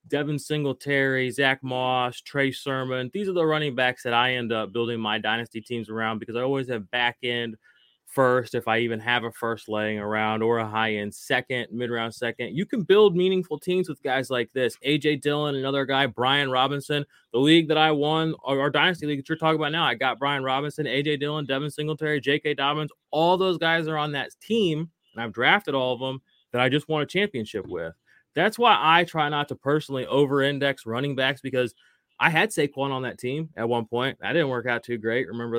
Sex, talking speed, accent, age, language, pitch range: male, 215 wpm, American, 20-39, English, 125-155 Hz